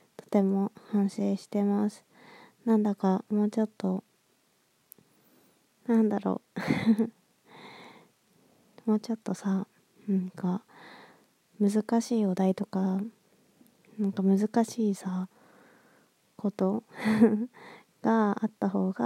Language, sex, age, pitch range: Japanese, female, 20-39, 195-220 Hz